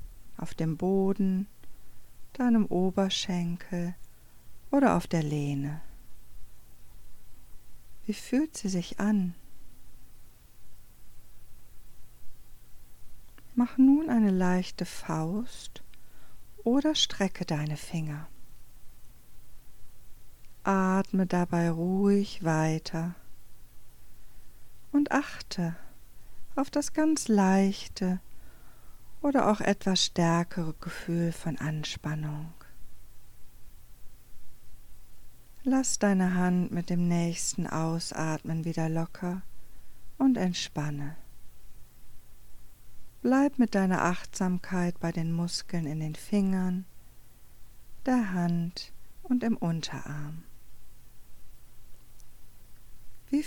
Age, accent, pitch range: 40-59, German, 160-200 Hz